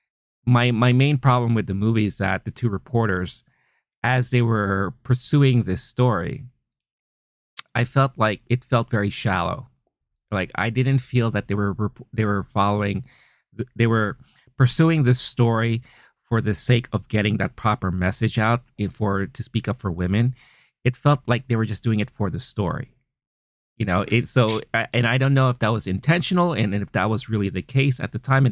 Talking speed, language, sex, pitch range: 190 wpm, English, male, 95-125 Hz